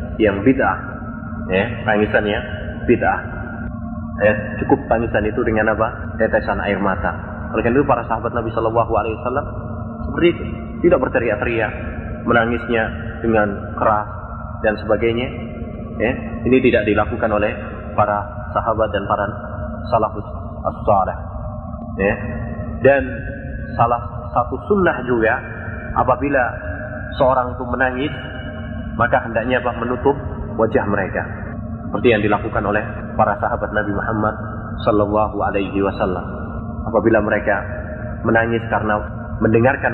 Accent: native